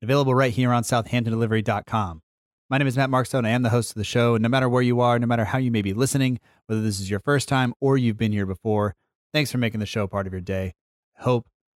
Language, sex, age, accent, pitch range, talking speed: English, male, 30-49, American, 105-125 Hz, 260 wpm